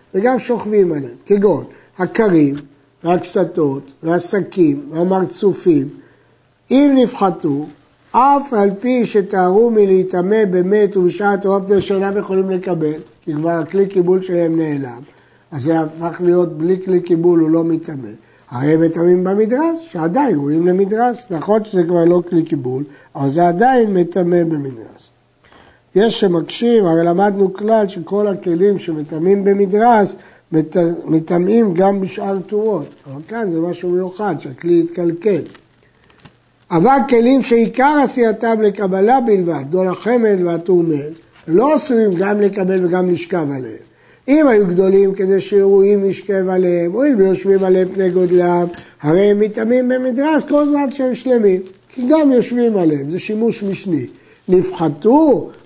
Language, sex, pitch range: Hebrew, male, 170-210 Hz